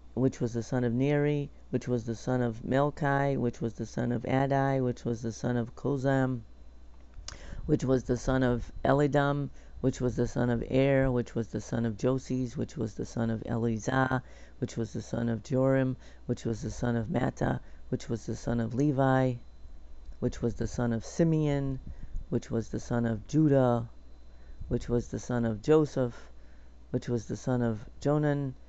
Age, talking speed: 50-69, 190 wpm